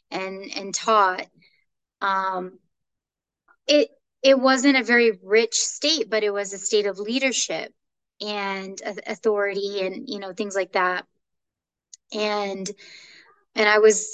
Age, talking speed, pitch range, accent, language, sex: 20-39, 125 wpm, 195-235 Hz, American, English, female